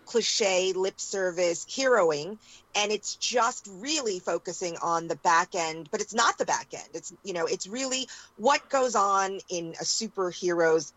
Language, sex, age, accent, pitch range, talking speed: English, female, 30-49, American, 165-215 Hz, 165 wpm